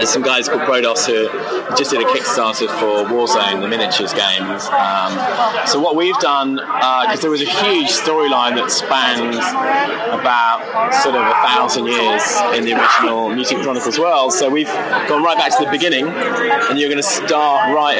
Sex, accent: male, British